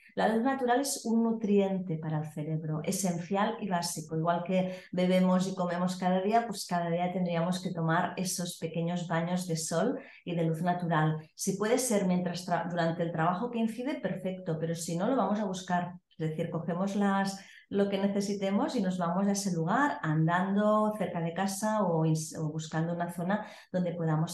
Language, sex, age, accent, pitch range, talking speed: Spanish, female, 30-49, Spanish, 165-200 Hz, 185 wpm